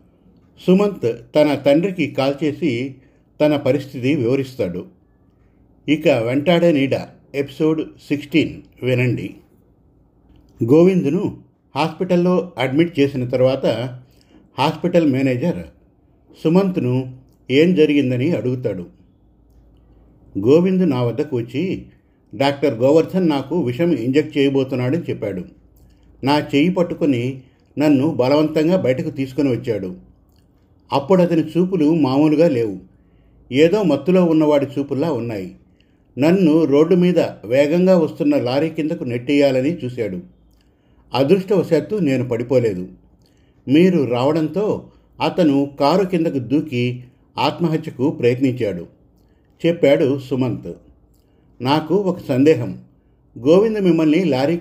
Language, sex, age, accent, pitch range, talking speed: Telugu, male, 50-69, native, 125-160 Hz, 90 wpm